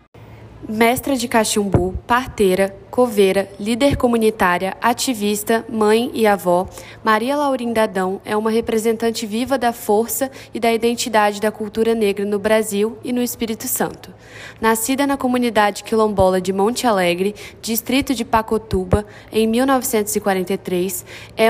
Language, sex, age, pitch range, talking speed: Romanian, female, 10-29, 205-245 Hz, 125 wpm